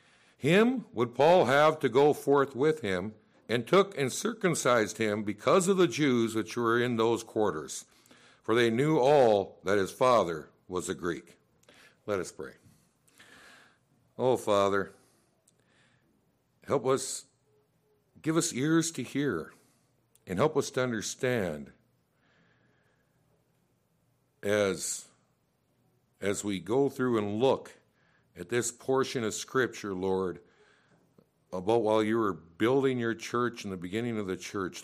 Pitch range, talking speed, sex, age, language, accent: 95-130 Hz, 130 wpm, male, 60-79, English, American